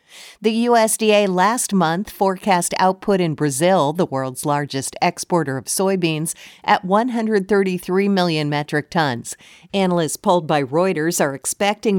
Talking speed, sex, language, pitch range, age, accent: 125 wpm, female, English, 160-195 Hz, 50-69, American